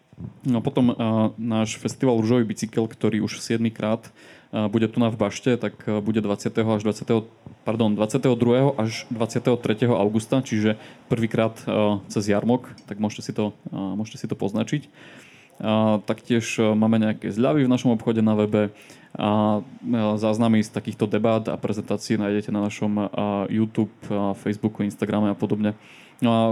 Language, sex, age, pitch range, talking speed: Slovak, male, 20-39, 105-115 Hz, 155 wpm